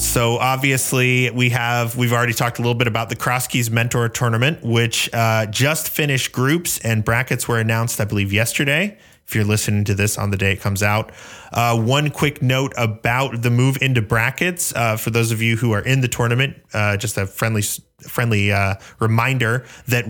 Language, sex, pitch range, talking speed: English, male, 105-125 Hz, 195 wpm